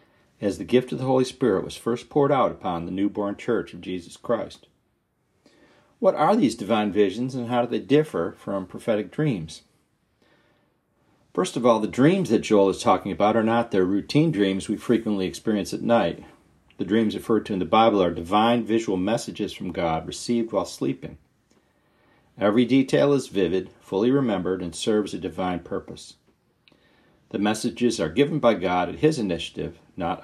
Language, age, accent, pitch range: English, 40-59, American, 100-125 Hz